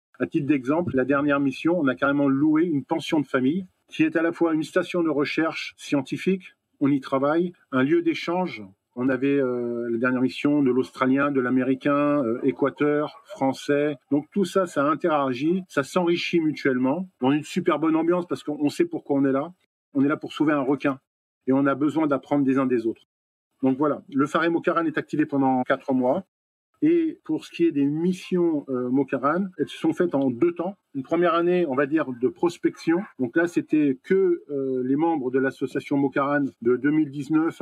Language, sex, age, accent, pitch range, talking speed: French, male, 40-59, French, 135-175 Hz, 200 wpm